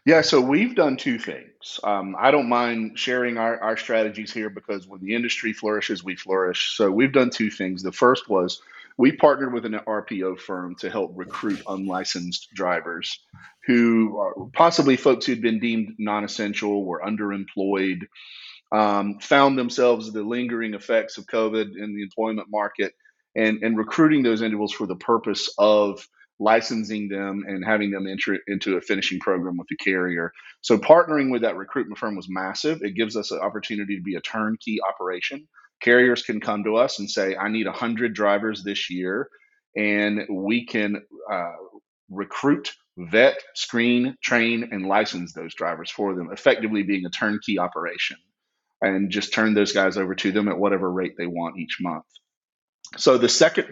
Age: 40-59